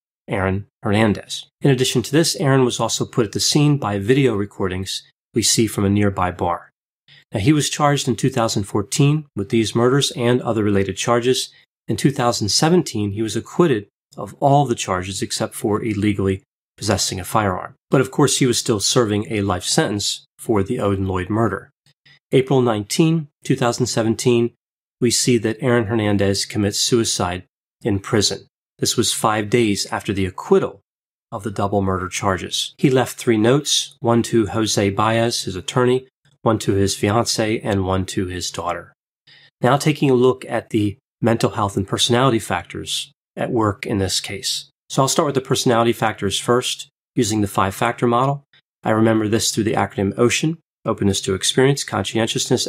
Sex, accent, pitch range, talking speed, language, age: male, American, 100-130 Hz, 165 wpm, English, 30-49